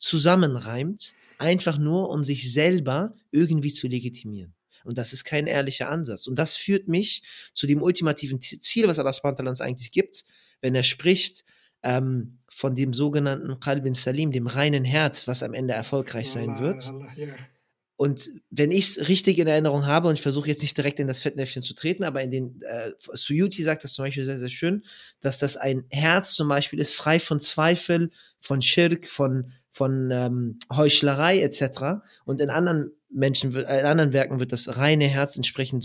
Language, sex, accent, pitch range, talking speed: German, male, German, 130-165 Hz, 180 wpm